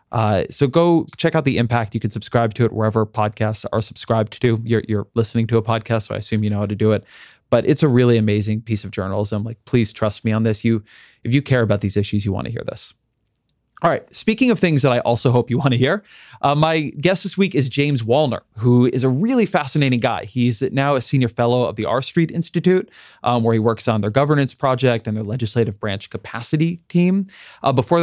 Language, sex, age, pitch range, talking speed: English, male, 30-49, 110-135 Hz, 240 wpm